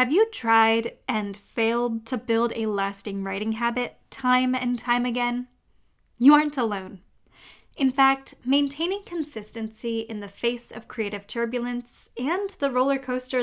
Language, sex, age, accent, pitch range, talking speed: English, female, 10-29, American, 215-275 Hz, 145 wpm